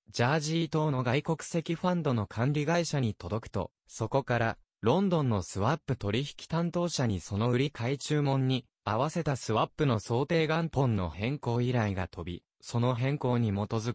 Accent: native